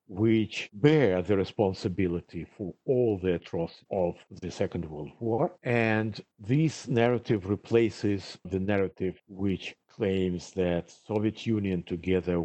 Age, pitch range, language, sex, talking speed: 50-69, 95-125 Hz, English, male, 120 wpm